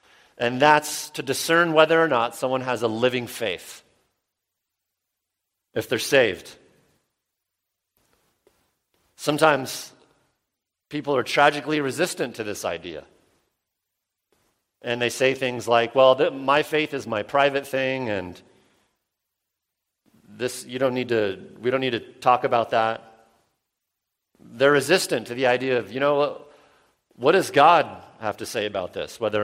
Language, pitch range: English, 100-135 Hz